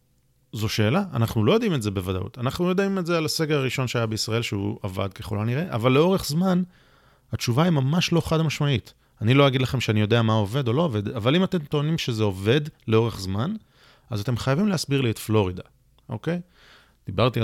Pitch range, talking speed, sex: 110-145 Hz, 200 wpm, male